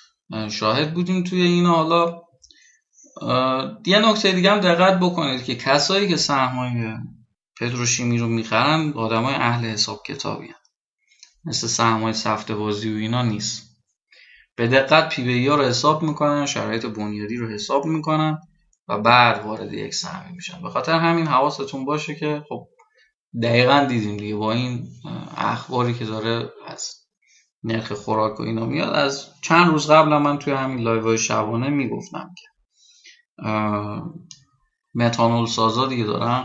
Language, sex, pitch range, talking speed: Persian, male, 115-165 Hz, 135 wpm